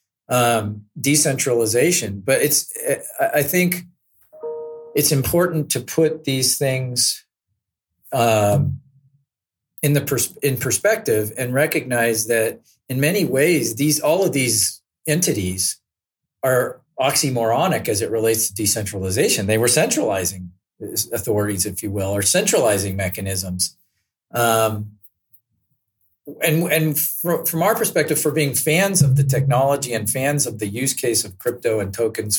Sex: male